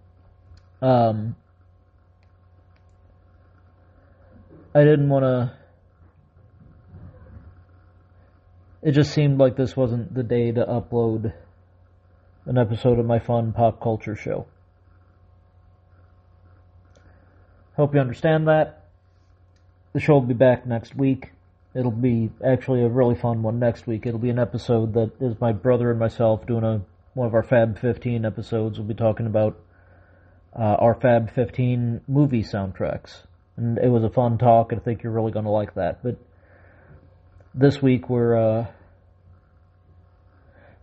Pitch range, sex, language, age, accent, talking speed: 90-120 Hz, male, English, 40-59, American, 130 wpm